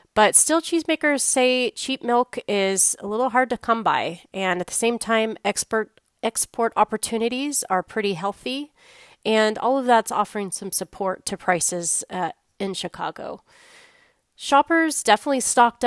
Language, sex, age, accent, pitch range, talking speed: English, female, 30-49, American, 195-255 Hz, 145 wpm